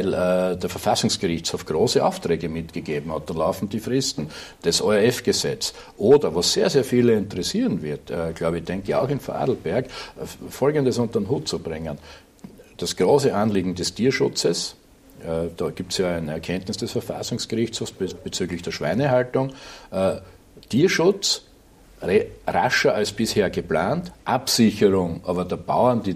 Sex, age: male, 60-79